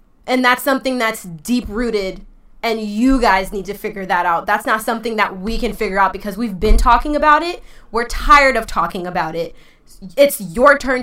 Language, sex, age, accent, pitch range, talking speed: English, female, 20-39, American, 195-245 Hz, 195 wpm